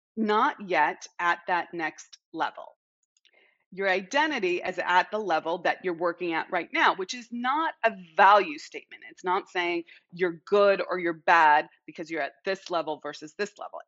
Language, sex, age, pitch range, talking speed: English, female, 30-49, 180-255 Hz, 175 wpm